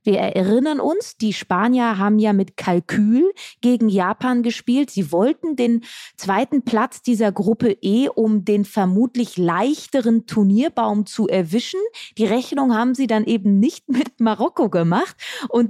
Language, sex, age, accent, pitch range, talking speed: German, female, 20-39, German, 205-255 Hz, 145 wpm